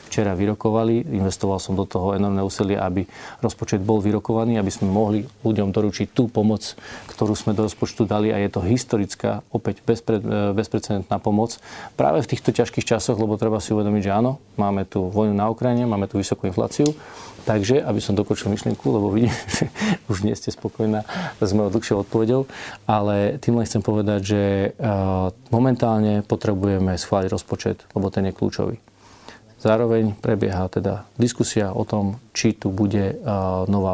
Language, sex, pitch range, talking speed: Slovak, male, 95-110 Hz, 165 wpm